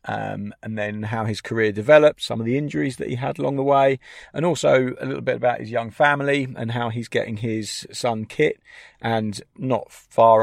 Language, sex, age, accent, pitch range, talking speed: English, male, 40-59, British, 120-145 Hz, 205 wpm